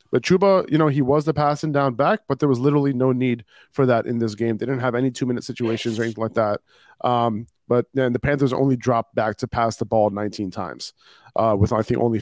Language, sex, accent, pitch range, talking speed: English, male, American, 115-145 Hz, 245 wpm